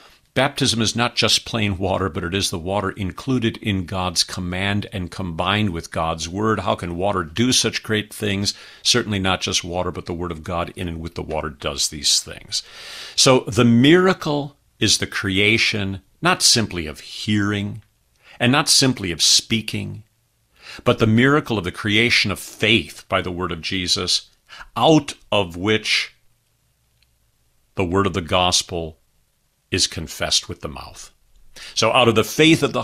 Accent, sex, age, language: American, male, 50-69, English